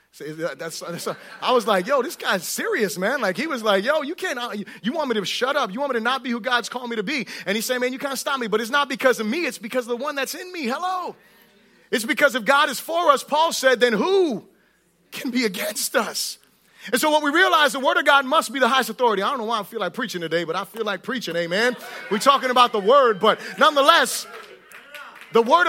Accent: American